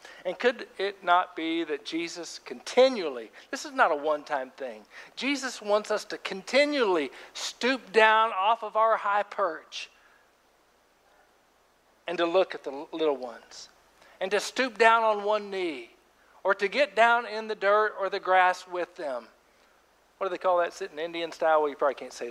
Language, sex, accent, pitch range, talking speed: English, male, American, 165-245 Hz, 180 wpm